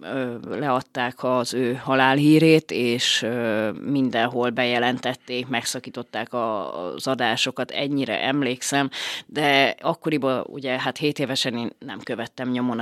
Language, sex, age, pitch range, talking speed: Hungarian, female, 30-49, 130-145 Hz, 105 wpm